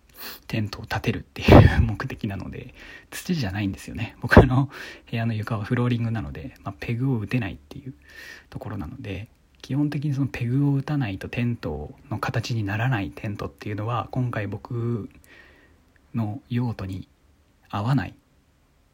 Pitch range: 100-130 Hz